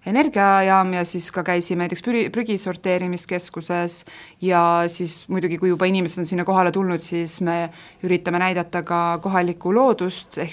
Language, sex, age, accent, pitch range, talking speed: English, female, 20-39, Finnish, 170-190 Hz, 150 wpm